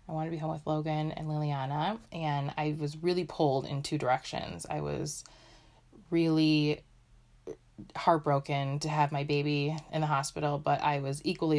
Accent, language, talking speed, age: American, English, 165 wpm, 20-39